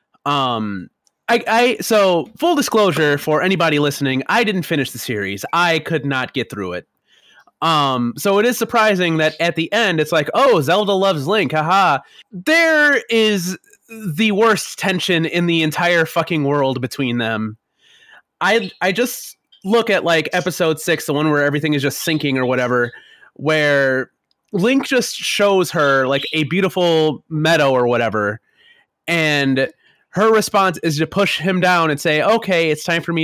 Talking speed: 165 wpm